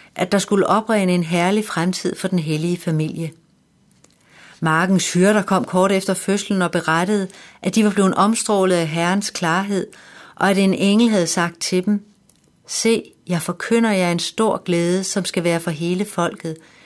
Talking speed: 175 wpm